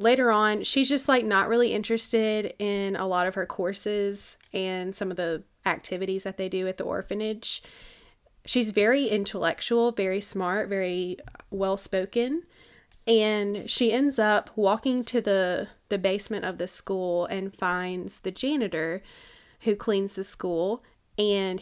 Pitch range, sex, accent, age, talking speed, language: 185-215 Hz, female, American, 20-39, 145 wpm, English